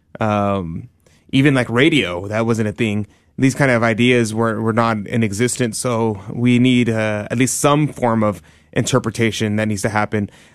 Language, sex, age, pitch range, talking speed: English, male, 20-39, 110-125 Hz, 175 wpm